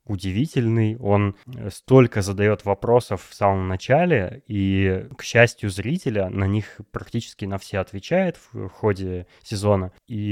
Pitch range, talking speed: 95-120 Hz, 130 wpm